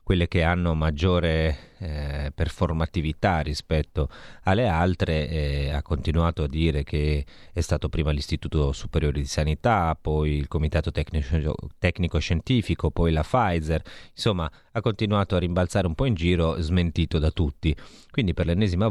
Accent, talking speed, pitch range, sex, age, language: native, 145 wpm, 75-90 Hz, male, 30-49, Italian